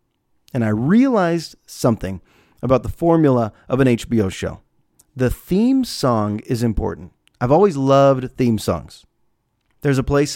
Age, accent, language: 30-49, American, English